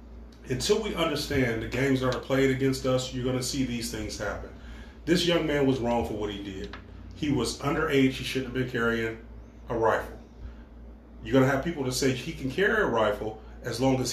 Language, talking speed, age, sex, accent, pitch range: English, 215 wpm, 30-49, male, American, 120-165 Hz